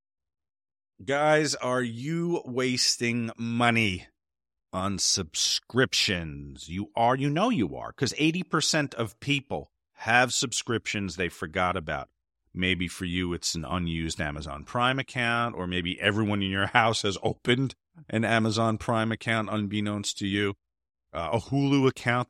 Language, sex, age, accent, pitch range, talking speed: English, male, 40-59, American, 90-130 Hz, 135 wpm